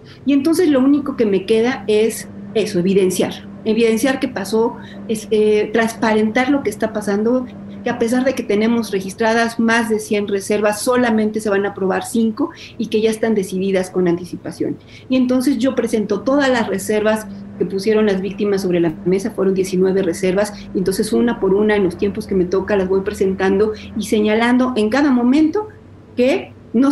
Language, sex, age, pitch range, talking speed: Spanish, female, 40-59, 195-250 Hz, 185 wpm